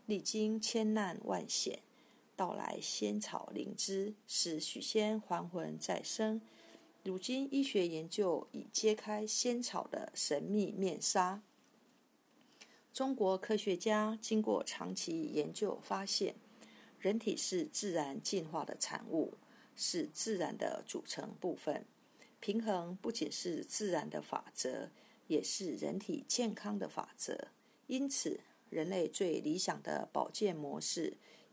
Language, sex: Chinese, female